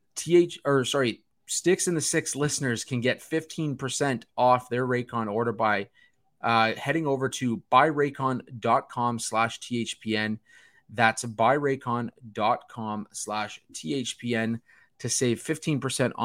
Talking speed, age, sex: 110 wpm, 30-49, male